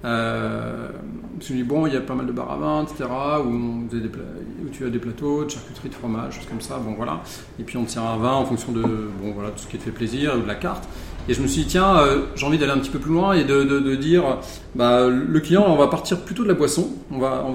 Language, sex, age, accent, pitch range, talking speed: French, male, 40-59, French, 120-145 Hz, 290 wpm